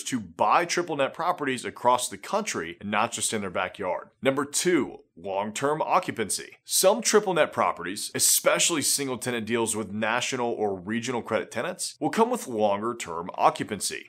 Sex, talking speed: male, 160 wpm